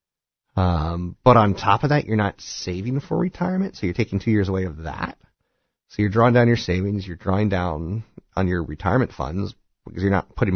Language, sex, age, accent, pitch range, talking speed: English, male, 40-59, American, 85-120 Hz, 205 wpm